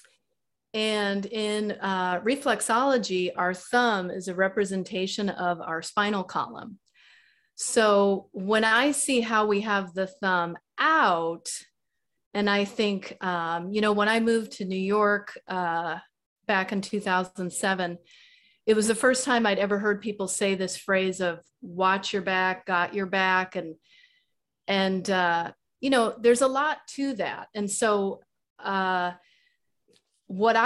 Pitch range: 185-225 Hz